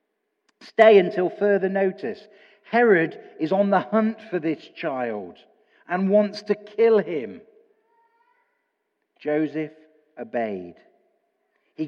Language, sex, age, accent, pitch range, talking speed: English, male, 40-59, British, 160-255 Hz, 100 wpm